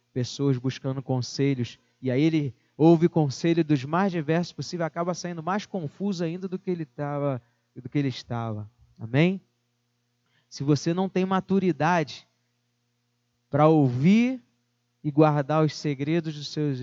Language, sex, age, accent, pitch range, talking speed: Portuguese, male, 20-39, Brazilian, 120-195 Hz, 140 wpm